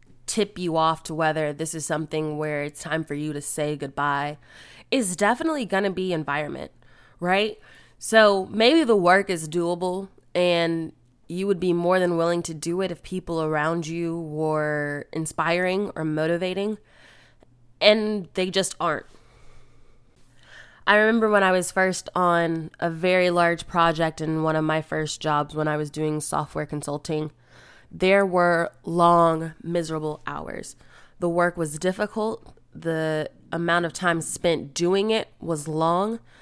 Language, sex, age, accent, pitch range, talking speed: English, female, 20-39, American, 155-185 Hz, 150 wpm